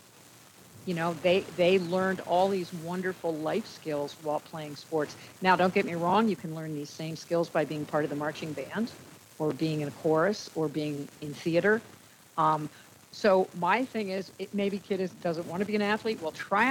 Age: 50-69